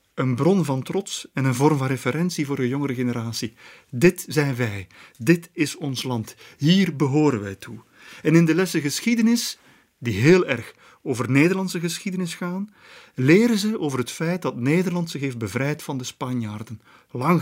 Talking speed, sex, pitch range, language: 170 wpm, male, 130-170 Hz, Dutch